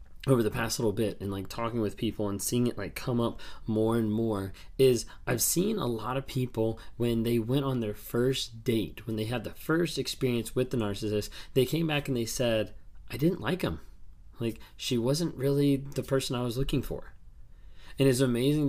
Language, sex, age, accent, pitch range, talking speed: English, male, 20-39, American, 110-135 Hz, 210 wpm